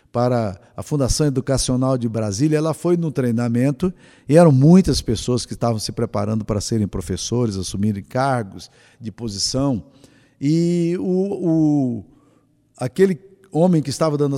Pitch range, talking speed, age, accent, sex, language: 120-165 Hz, 140 wpm, 50-69, Brazilian, male, Portuguese